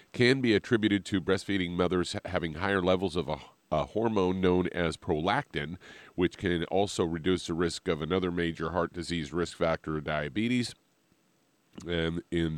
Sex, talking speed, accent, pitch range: male, 155 wpm, American, 80-95 Hz